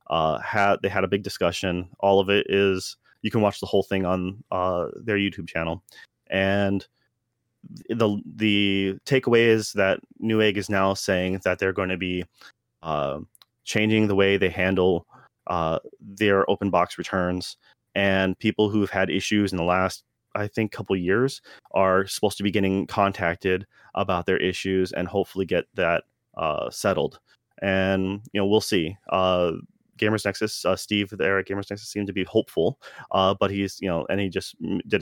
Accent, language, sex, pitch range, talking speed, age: American, English, male, 95-105 Hz, 180 wpm, 30-49